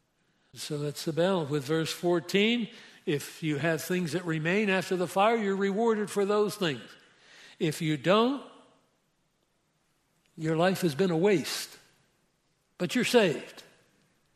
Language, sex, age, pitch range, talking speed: English, male, 60-79, 165-200 Hz, 140 wpm